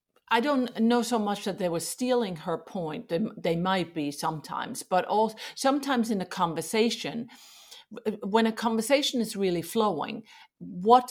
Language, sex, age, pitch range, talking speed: English, female, 50-69, 165-230 Hz, 155 wpm